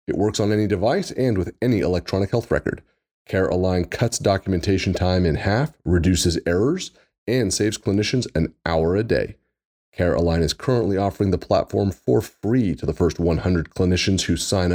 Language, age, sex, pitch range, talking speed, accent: English, 30-49, male, 85-100 Hz, 170 wpm, American